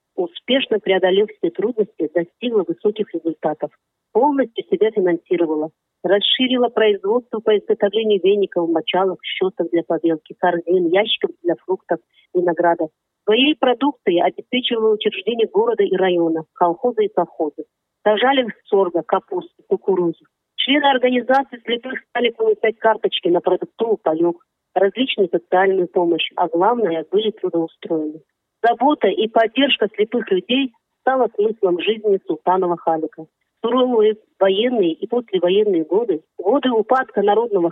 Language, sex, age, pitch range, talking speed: Russian, female, 40-59, 180-250 Hz, 120 wpm